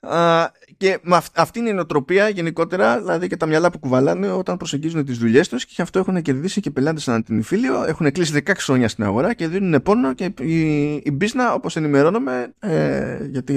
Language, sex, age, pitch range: Greek, male, 20-39, 120-185 Hz